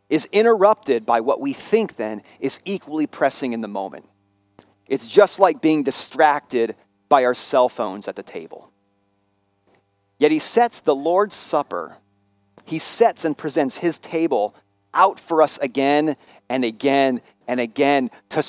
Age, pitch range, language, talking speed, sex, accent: 40-59, 130-205 Hz, English, 150 wpm, male, American